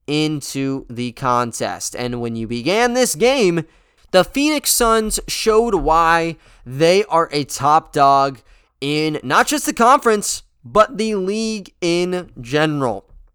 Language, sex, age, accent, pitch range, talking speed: English, male, 20-39, American, 135-195 Hz, 130 wpm